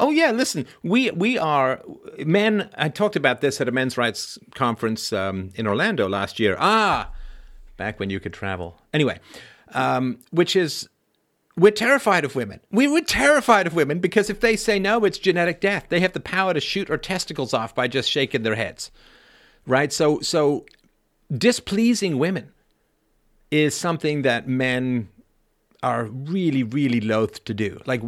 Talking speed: 165 wpm